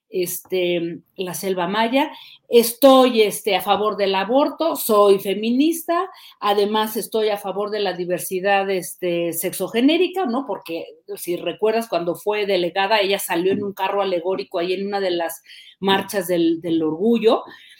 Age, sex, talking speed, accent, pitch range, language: 40-59, female, 130 wpm, Mexican, 195-270 Hz, Spanish